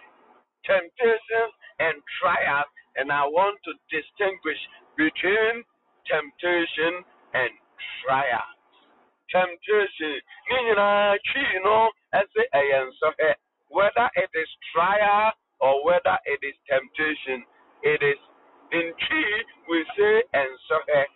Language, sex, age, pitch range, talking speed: English, male, 60-79, 165-265 Hz, 90 wpm